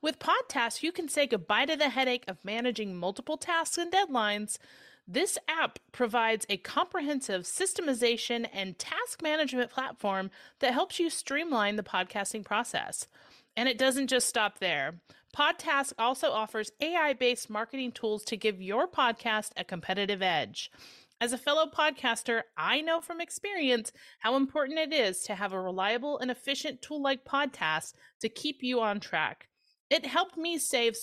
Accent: American